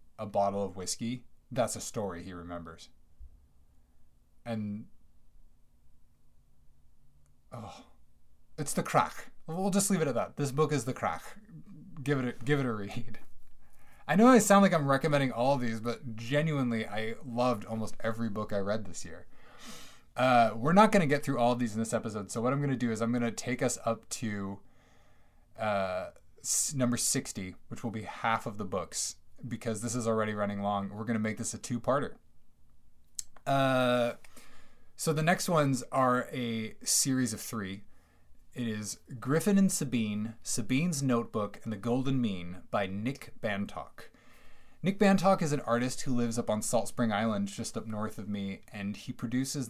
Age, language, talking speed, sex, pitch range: 20-39, English, 175 wpm, male, 105-130 Hz